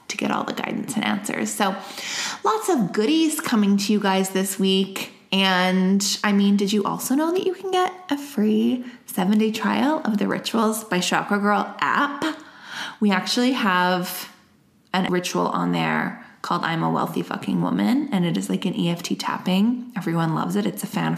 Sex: female